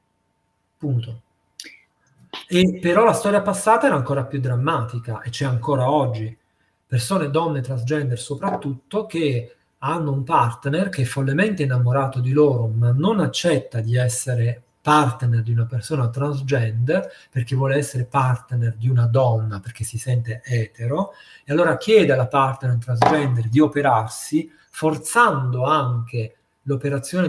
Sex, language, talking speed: male, Italian, 130 wpm